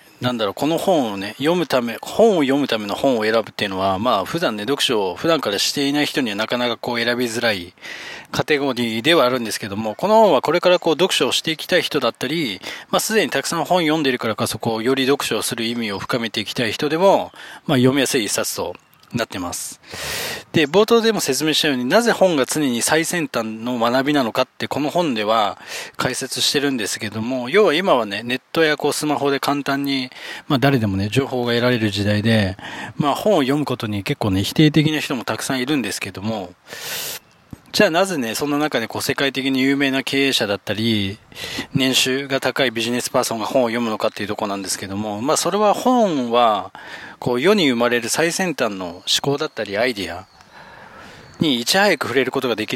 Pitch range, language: 110-150 Hz, Japanese